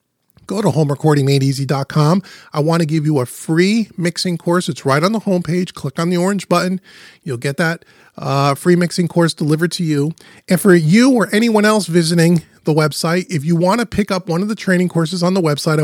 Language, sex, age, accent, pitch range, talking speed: English, male, 30-49, American, 150-185 Hz, 210 wpm